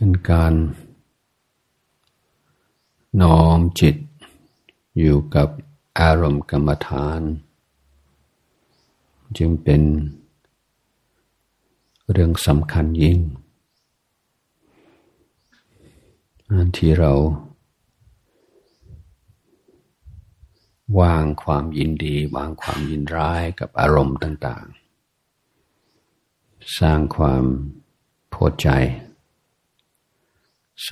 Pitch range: 75-85 Hz